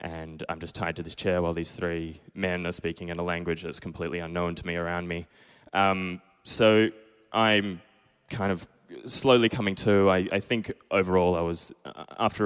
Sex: male